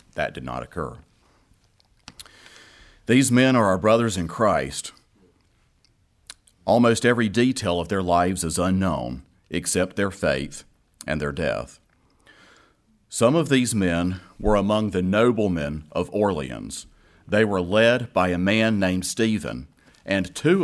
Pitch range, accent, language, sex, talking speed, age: 90-115 Hz, American, English, male, 130 wpm, 40-59